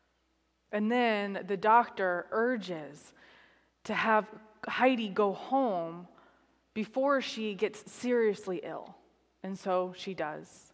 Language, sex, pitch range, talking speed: English, female, 180-225 Hz, 105 wpm